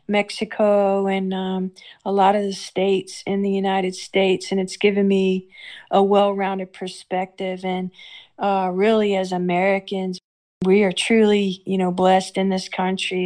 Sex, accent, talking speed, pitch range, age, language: female, American, 150 wpm, 185-195 Hz, 40-59, English